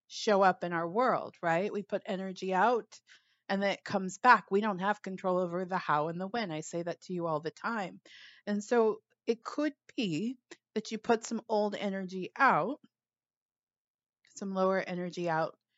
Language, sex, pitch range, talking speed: English, female, 175-215 Hz, 185 wpm